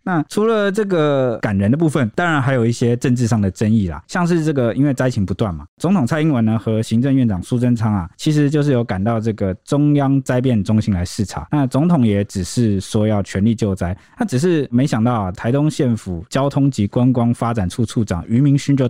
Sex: male